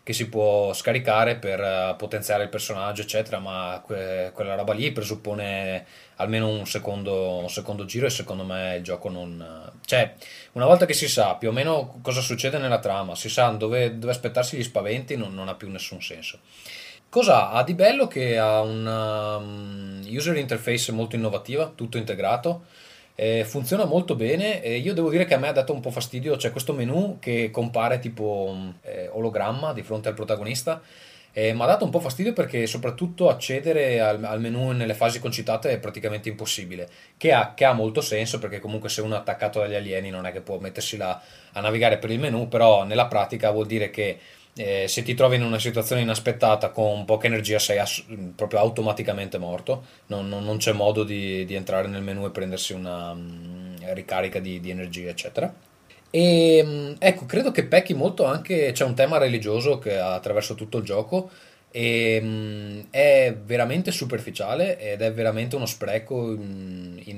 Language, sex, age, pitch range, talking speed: Italian, male, 20-39, 100-125 Hz, 185 wpm